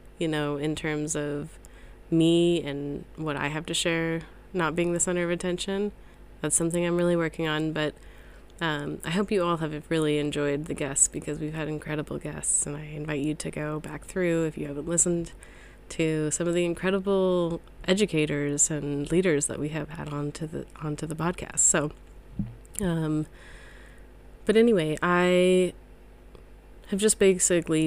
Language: English